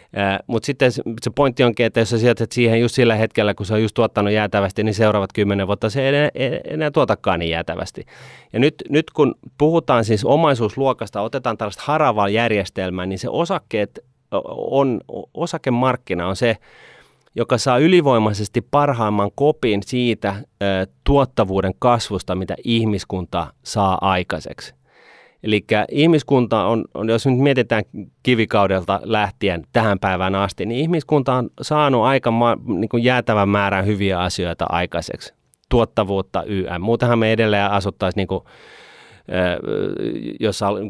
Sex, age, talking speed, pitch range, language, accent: male, 30-49, 135 wpm, 95-115 Hz, Finnish, native